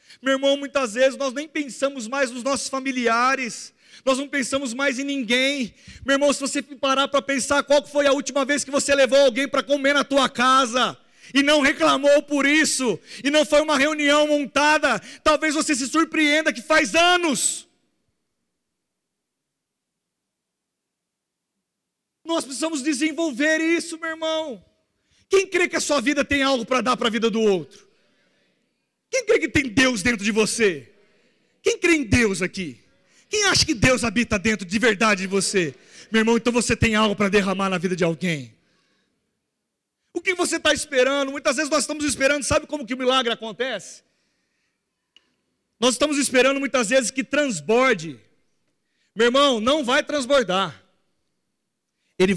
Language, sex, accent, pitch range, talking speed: Portuguese, male, Brazilian, 240-295 Hz, 160 wpm